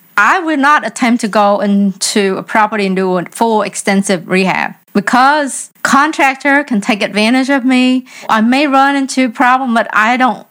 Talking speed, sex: 175 wpm, female